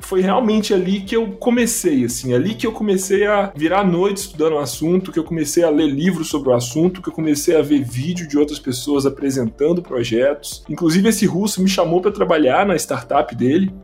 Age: 20-39